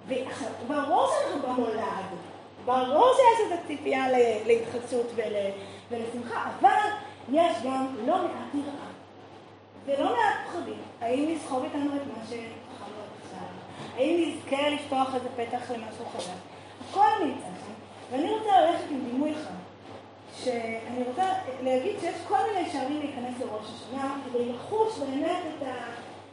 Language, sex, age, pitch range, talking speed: Hebrew, female, 30-49, 255-345 Hz, 125 wpm